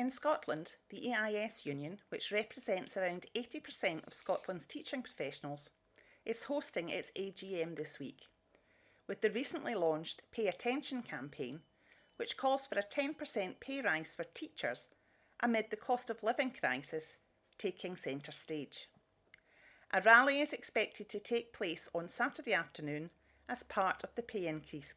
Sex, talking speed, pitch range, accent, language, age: female, 145 wpm, 165-245 Hz, British, English, 40-59